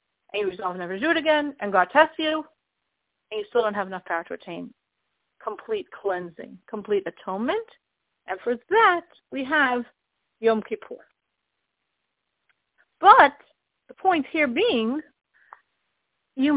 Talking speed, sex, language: 140 wpm, female, English